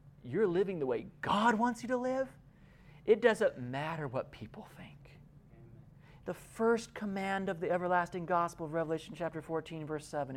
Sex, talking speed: male, 160 wpm